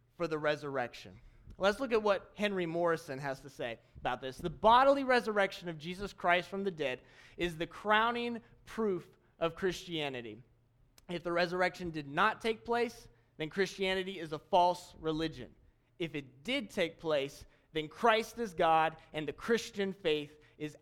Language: English